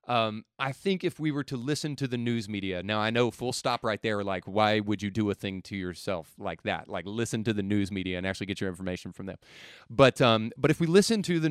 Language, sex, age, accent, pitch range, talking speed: English, male, 30-49, American, 105-135 Hz, 265 wpm